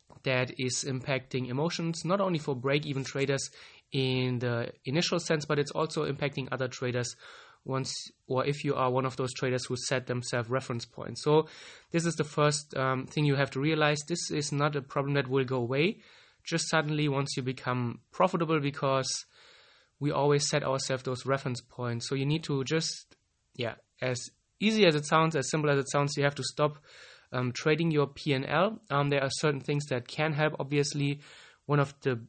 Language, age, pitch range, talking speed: English, 20-39, 130-155 Hz, 190 wpm